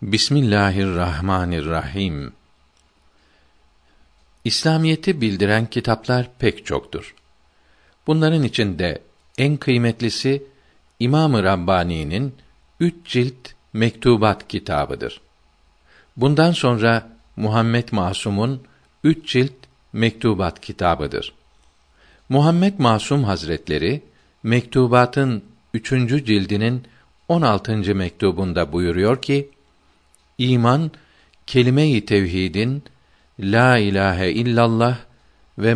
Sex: male